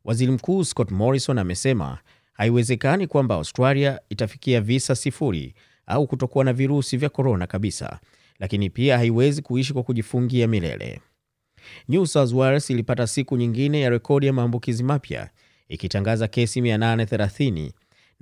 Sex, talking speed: male, 130 wpm